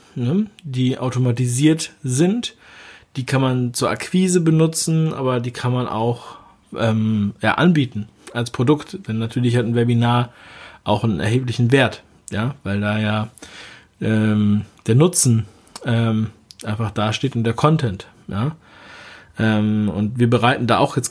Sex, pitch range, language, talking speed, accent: male, 115-150 Hz, German, 140 wpm, German